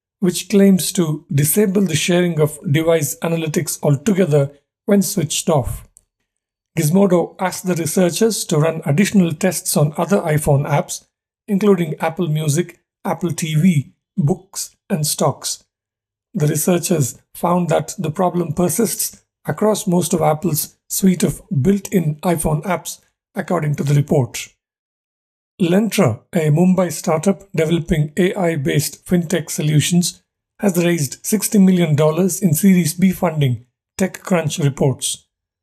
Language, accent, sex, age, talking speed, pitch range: English, Indian, male, 50-69, 120 wpm, 145-180 Hz